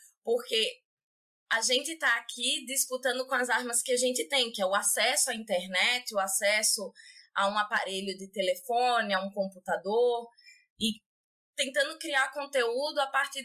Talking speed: 155 wpm